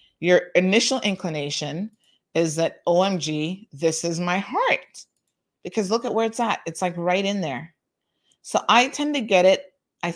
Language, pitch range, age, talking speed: English, 160-205 Hz, 30-49, 165 wpm